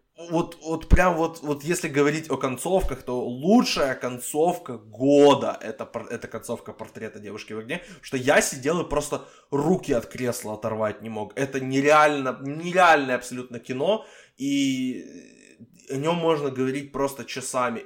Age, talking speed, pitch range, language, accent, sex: 20-39, 145 wpm, 130-180 Hz, Ukrainian, native, male